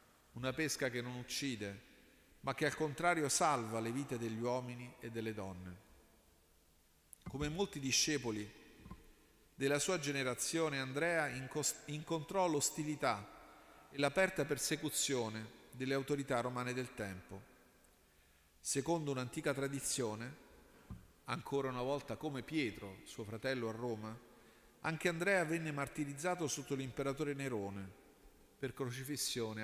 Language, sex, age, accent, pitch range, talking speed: Italian, male, 40-59, native, 110-145 Hz, 110 wpm